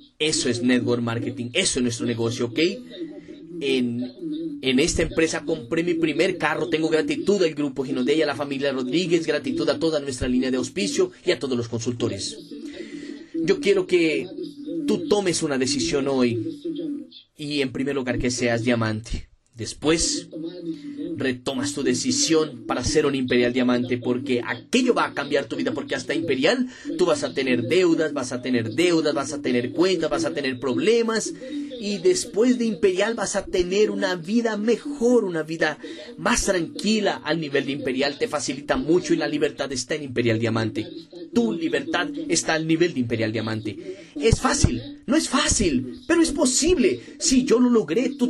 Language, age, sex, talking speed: Portuguese, 30-49, male, 170 wpm